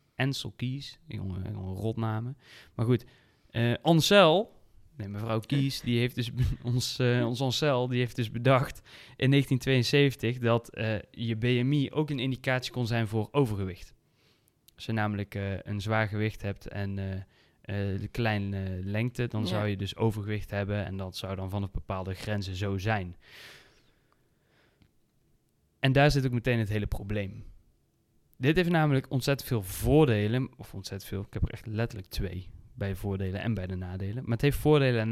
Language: Dutch